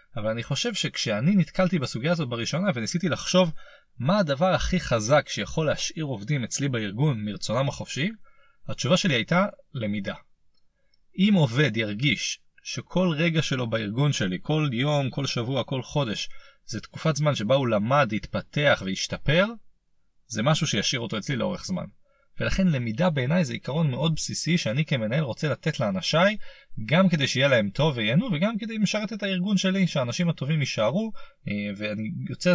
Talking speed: 155 wpm